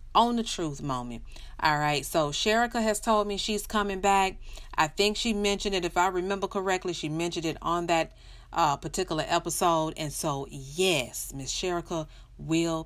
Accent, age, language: American, 40-59, English